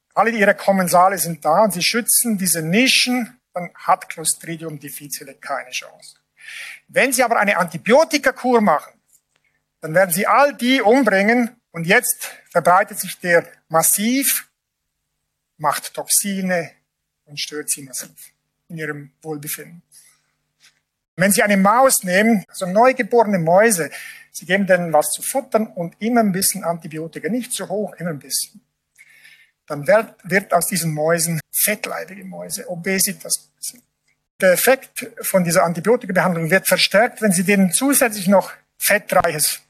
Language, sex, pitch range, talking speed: English, male, 170-230 Hz, 135 wpm